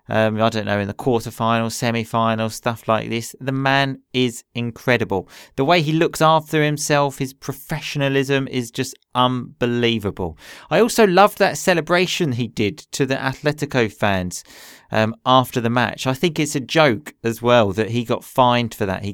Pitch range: 115-150 Hz